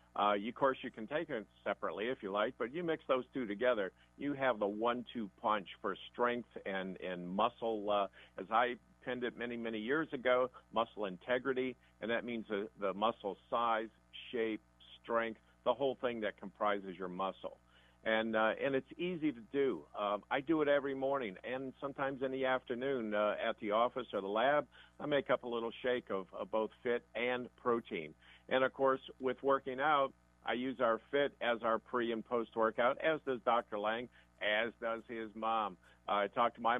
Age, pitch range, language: 50-69, 100-125 Hz, English